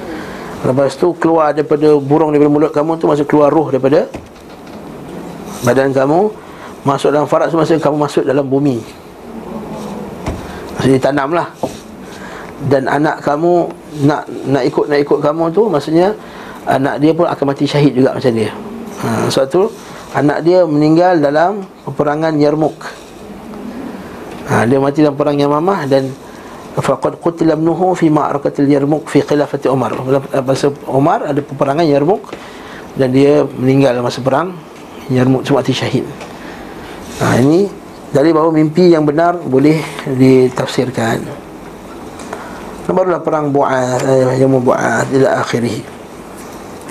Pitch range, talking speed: 135-160 Hz, 135 wpm